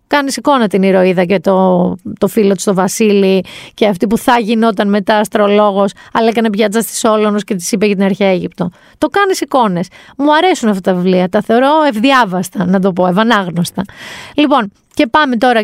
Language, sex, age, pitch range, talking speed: Greek, female, 30-49, 200-245 Hz, 190 wpm